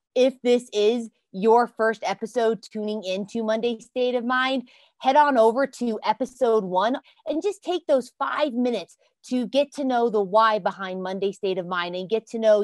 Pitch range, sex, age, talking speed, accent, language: 185-245 Hz, female, 20-39, 185 wpm, American, English